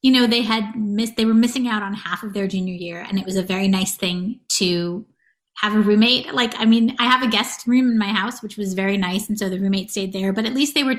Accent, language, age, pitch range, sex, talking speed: American, English, 30-49, 195-240 Hz, female, 285 wpm